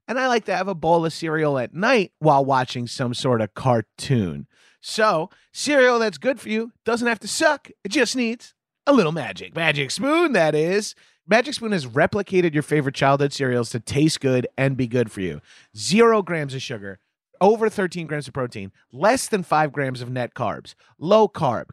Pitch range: 130-195 Hz